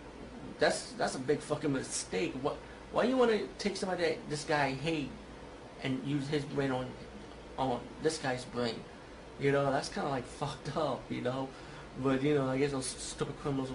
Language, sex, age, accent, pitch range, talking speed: English, male, 30-49, American, 125-145 Hz, 190 wpm